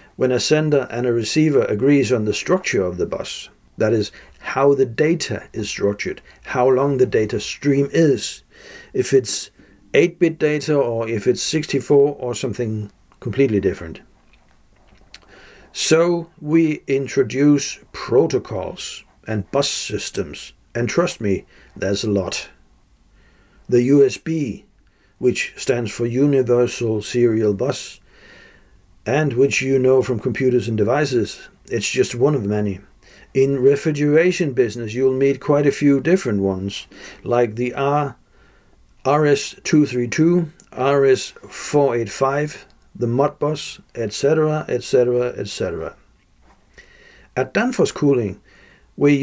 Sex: male